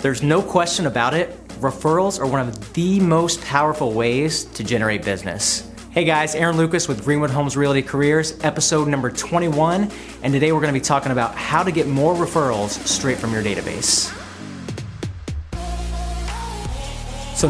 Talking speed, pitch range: 160 wpm, 115-155 Hz